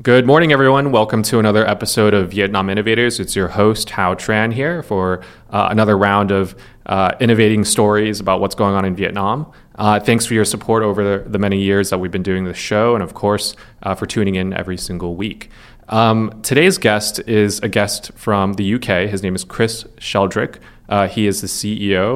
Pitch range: 95-110 Hz